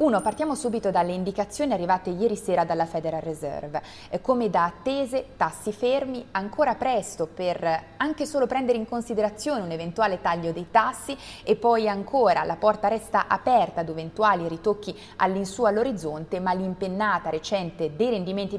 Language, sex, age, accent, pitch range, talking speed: Italian, female, 20-39, native, 175-230 Hz, 150 wpm